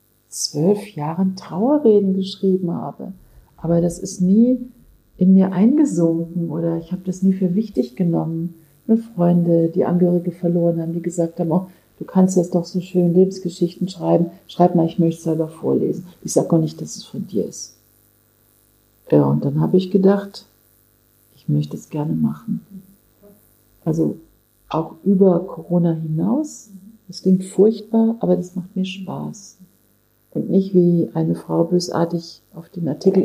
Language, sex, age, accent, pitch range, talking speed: German, female, 50-69, German, 160-190 Hz, 155 wpm